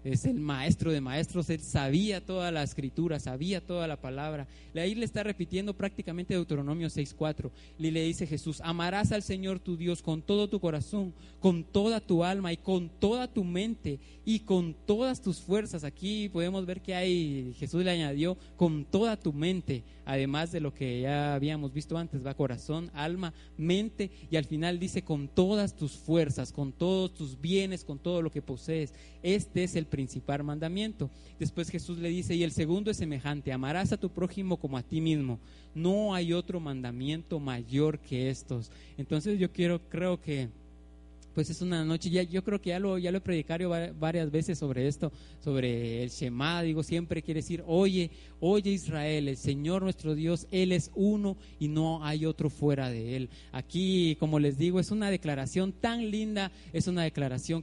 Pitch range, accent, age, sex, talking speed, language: 145-185 Hz, Mexican, 30-49, male, 185 wpm, Spanish